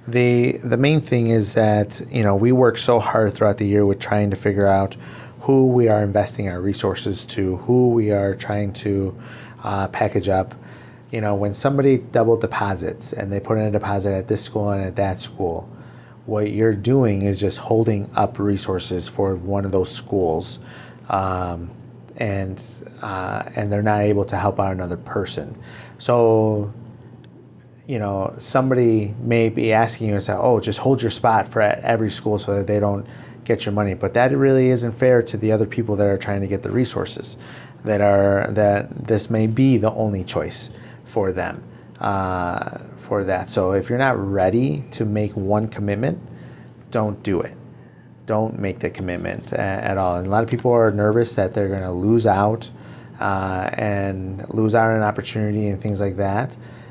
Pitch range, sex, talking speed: 100-120 Hz, male, 185 wpm